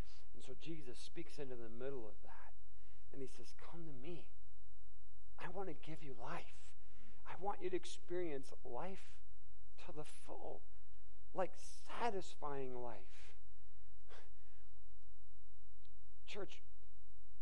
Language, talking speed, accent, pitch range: English, 115 wpm, American, 95-145 Hz